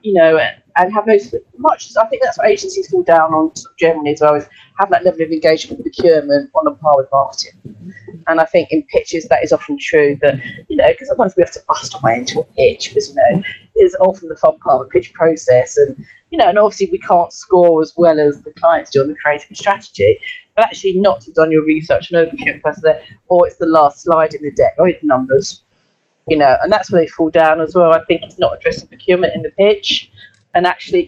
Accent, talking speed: British, 245 wpm